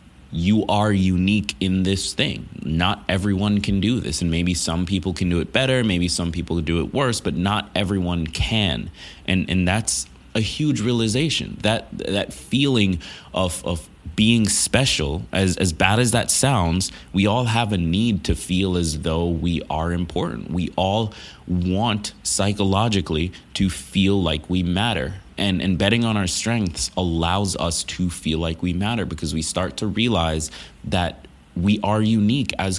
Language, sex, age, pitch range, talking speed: English, male, 20-39, 85-105 Hz, 170 wpm